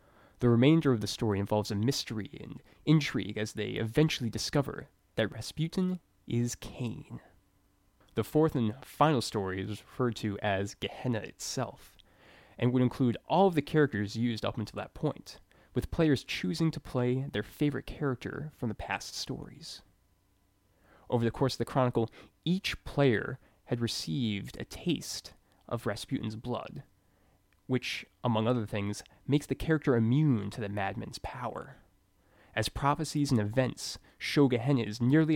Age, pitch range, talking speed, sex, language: 20-39, 100-130 Hz, 150 wpm, male, English